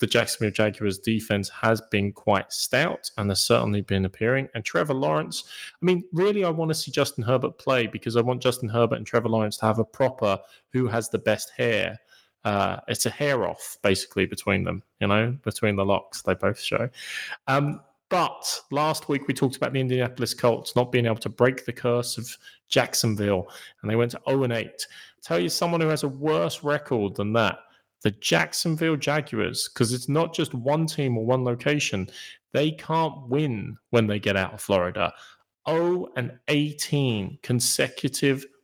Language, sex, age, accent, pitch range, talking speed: English, male, 30-49, British, 110-140 Hz, 185 wpm